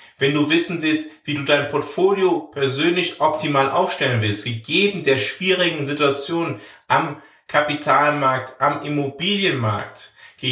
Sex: male